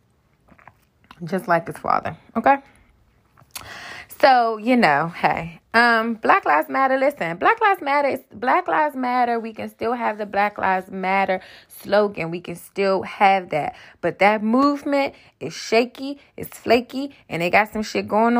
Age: 20-39